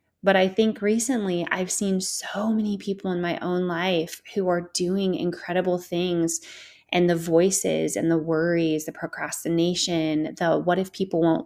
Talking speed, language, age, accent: 160 wpm, English, 20-39, American